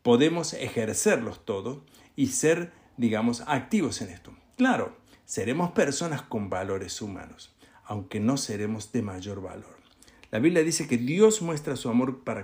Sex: male